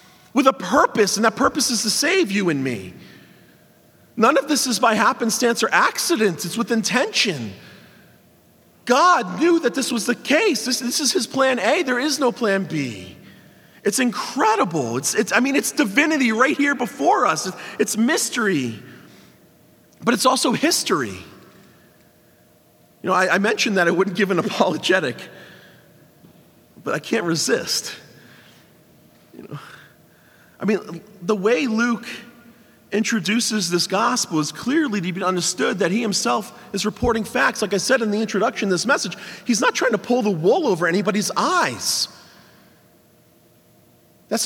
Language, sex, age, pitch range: English, male, 40-59, 200-260 Hz